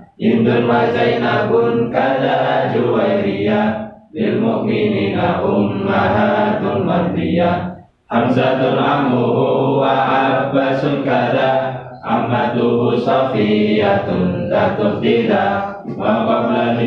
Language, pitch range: Indonesian, 115-135 Hz